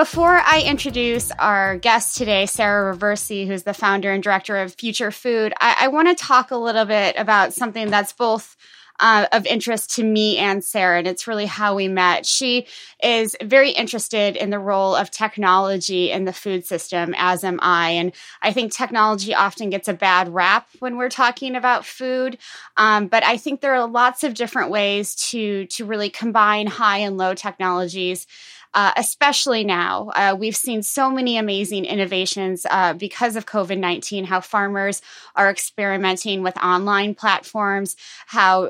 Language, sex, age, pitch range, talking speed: English, female, 20-39, 190-230 Hz, 170 wpm